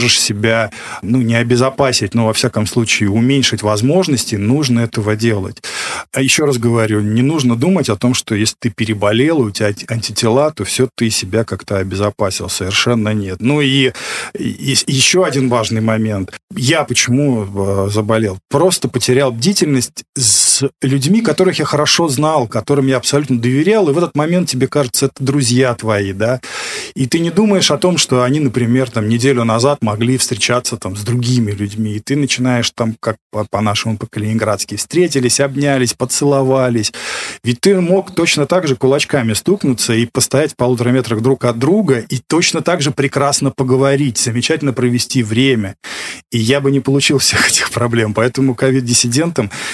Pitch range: 110-140 Hz